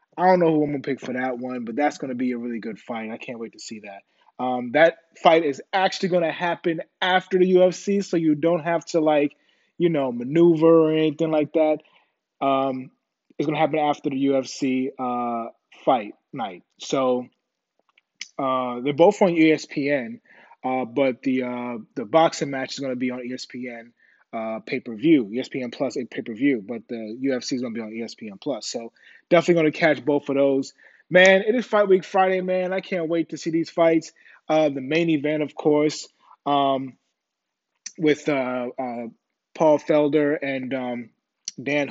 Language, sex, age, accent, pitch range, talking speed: English, male, 20-39, American, 130-170 Hz, 185 wpm